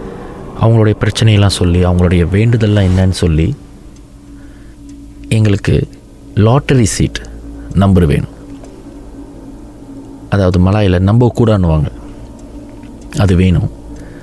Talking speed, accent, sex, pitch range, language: 80 wpm, native, male, 85-110 Hz, Tamil